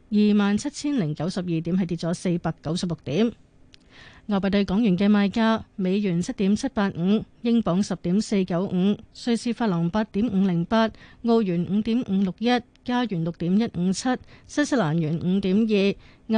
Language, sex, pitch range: Chinese, female, 185-225 Hz